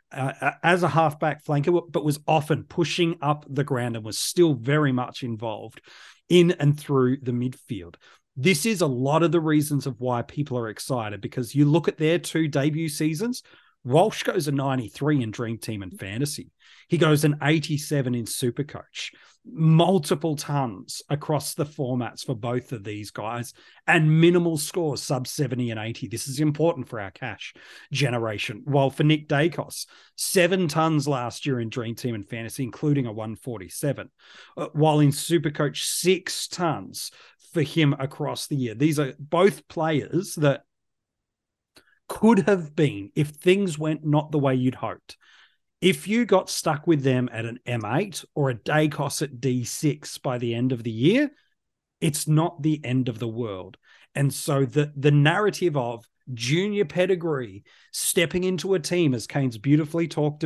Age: 30-49